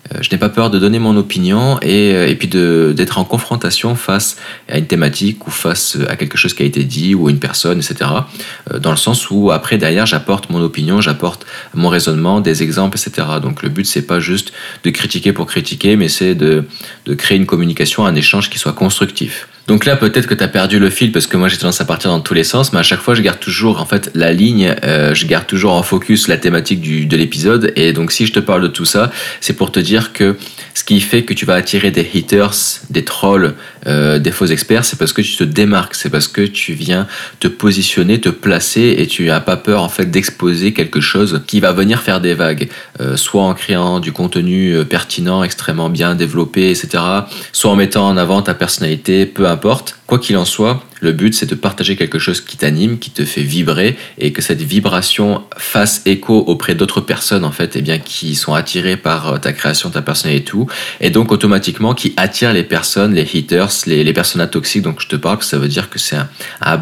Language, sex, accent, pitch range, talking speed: French, male, French, 80-105 Hz, 235 wpm